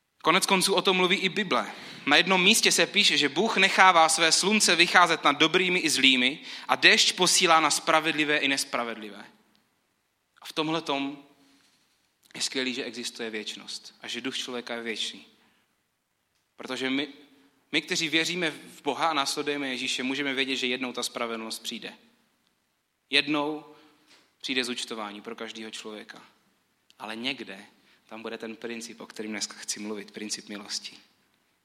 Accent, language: native, Czech